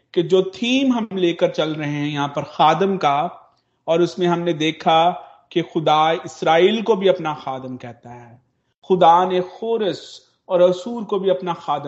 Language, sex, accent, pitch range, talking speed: Hindi, male, native, 155-190 Hz, 160 wpm